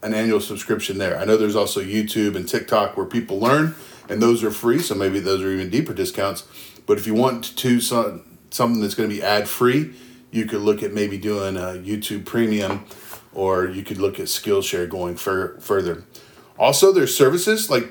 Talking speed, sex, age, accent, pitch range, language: 200 wpm, male, 30-49, American, 105-130 Hz, English